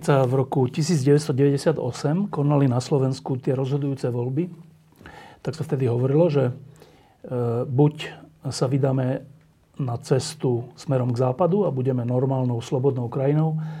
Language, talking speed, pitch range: Slovak, 120 wpm, 120-150 Hz